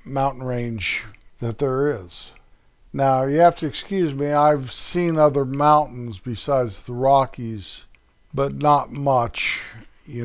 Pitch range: 115-140 Hz